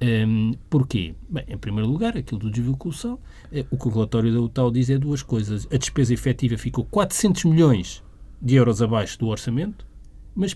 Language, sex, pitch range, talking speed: Portuguese, male, 125-200 Hz, 165 wpm